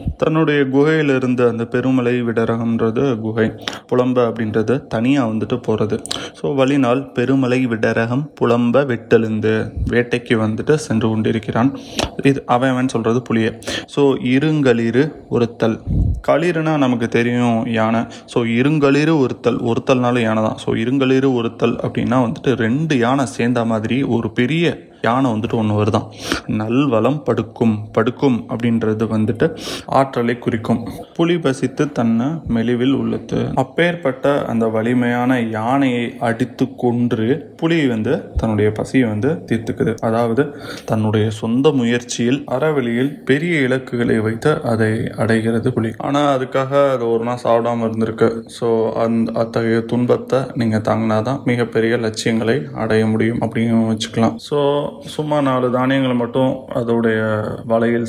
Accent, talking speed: native, 110 wpm